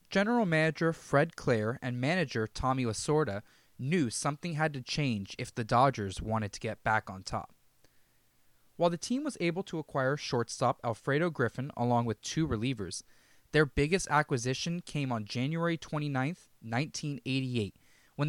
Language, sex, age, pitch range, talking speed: English, male, 20-39, 120-160 Hz, 150 wpm